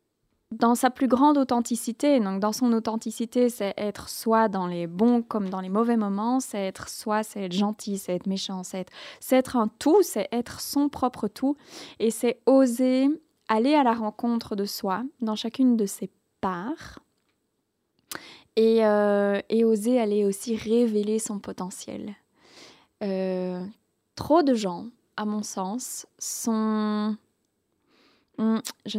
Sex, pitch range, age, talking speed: female, 215-260 Hz, 20-39, 150 wpm